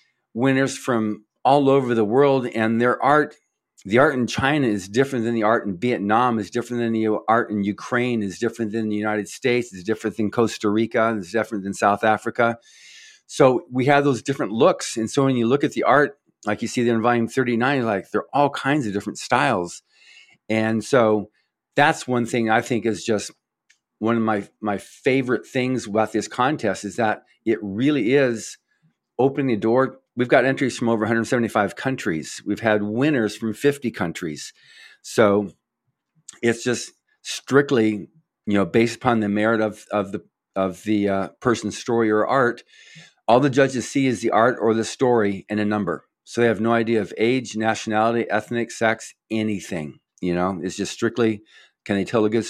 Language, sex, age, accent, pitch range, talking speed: English, male, 50-69, American, 105-125 Hz, 190 wpm